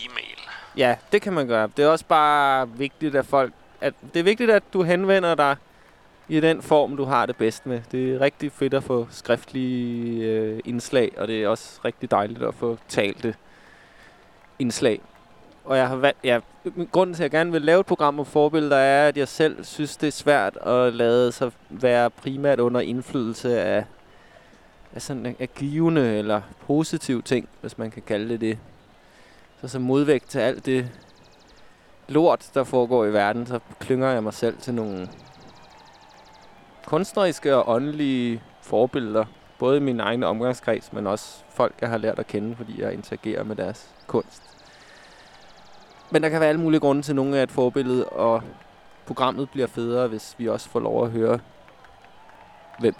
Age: 20-39